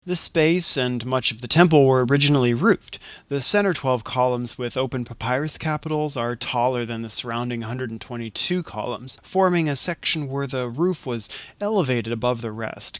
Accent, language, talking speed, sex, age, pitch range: American, English, 165 wpm, male, 30-49, 120-140 Hz